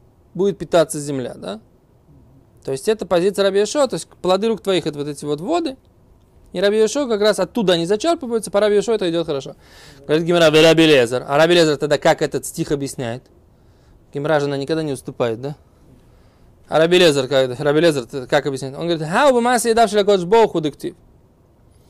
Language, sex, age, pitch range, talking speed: Russian, male, 20-39, 140-210 Hz, 160 wpm